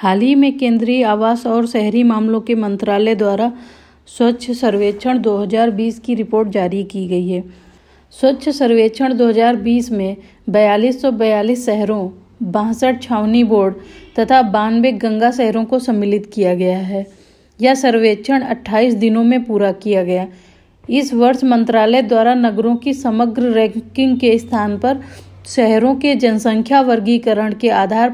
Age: 40-59